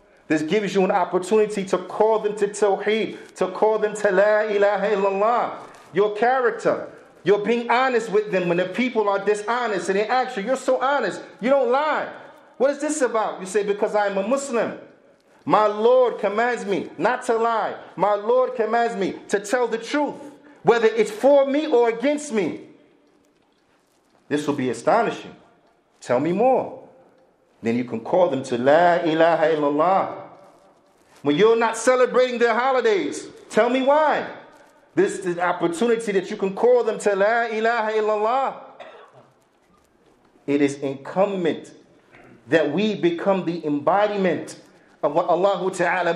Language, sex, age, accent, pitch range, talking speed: English, male, 50-69, American, 185-250 Hz, 155 wpm